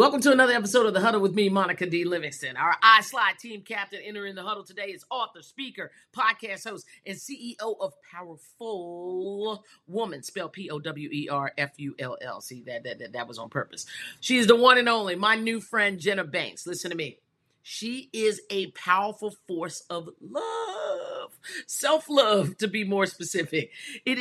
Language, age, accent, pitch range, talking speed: English, 40-59, American, 155-215 Hz, 165 wpm